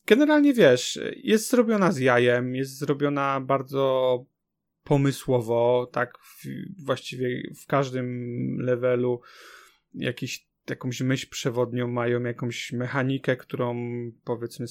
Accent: native